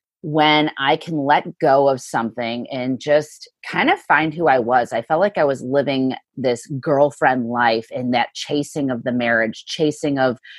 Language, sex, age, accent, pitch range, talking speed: English, female, 30-49, American, 130-165 Hz, 180 wpm